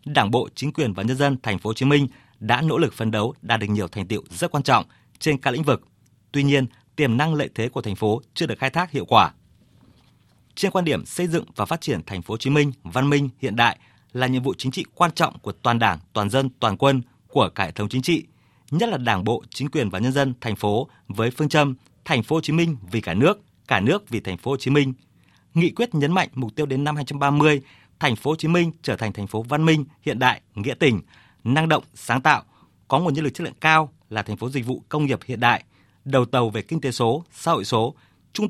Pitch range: 110-150 Hz